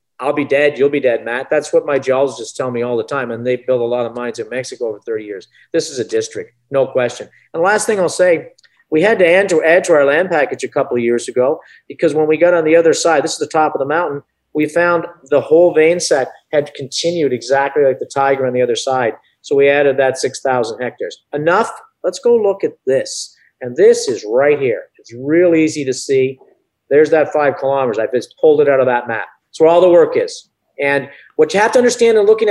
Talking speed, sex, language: 250 wpm, male, English